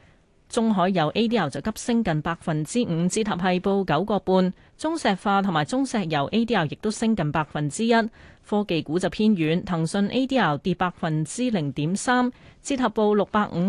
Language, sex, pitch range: Chinese, female, 165-225 Hz